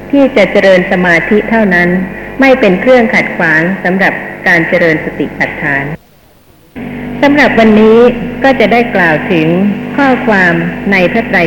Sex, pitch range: female, 195-240 Hz